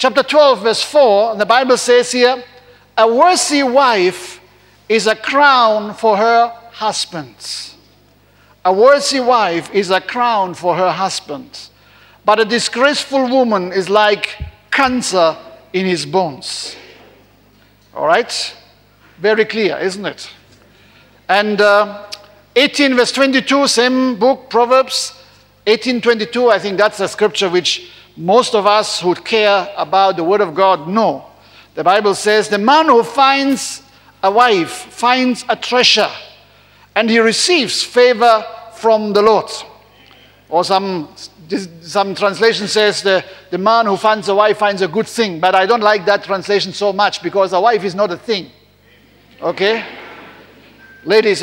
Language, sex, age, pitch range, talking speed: English, male, 60-79, 190-245 Hz, 140 wpm